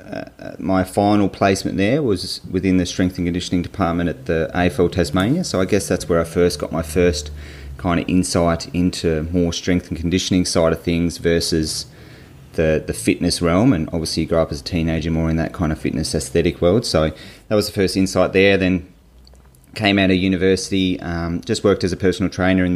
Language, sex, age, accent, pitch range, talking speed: English, male, 30-49, Australian, 80-95 Hz, 205 wpm